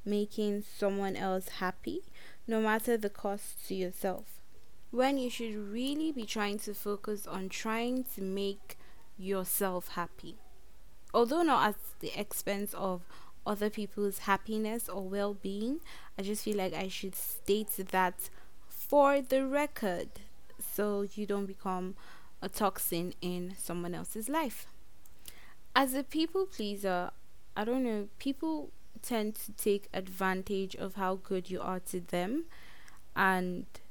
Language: English